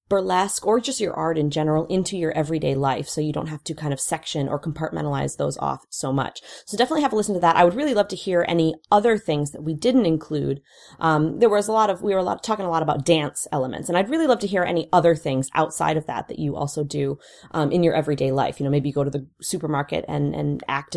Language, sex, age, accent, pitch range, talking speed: English, female, 30-49, American, 155-195 Hz, 270 wpm